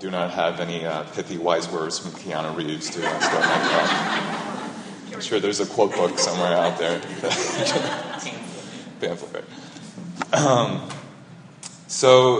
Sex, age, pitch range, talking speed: male, 30-49, 105-155 Hz, 120 wpm